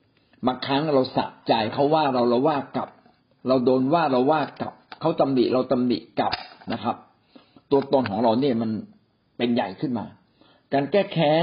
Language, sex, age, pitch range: Thai, male, 60-79, 120-145 Hz